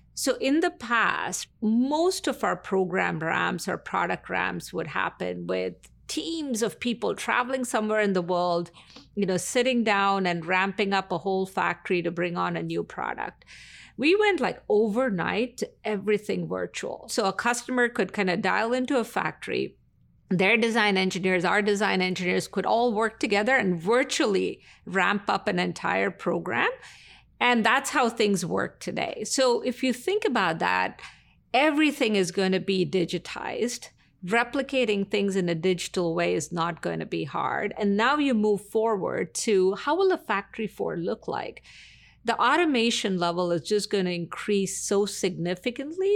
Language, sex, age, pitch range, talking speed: English, female, 50-69, 185-240 Hz, 160 wpm